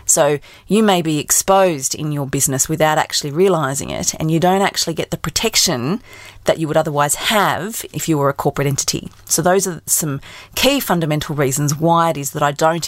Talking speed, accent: 200 wpm, Australian